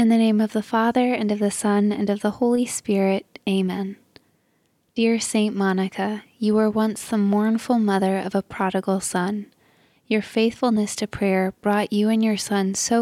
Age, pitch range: 20-39, 195-225 Hz